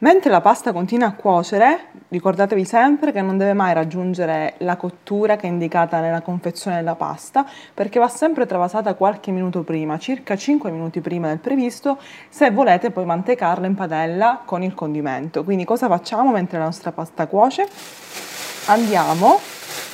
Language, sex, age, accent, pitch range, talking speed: Italian, female, 20-39, native, 165-220 Hz, 160 wpm